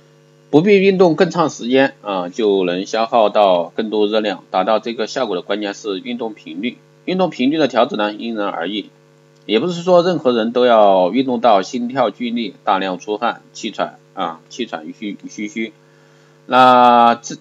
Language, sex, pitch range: Chinese, male, 100-135 Hz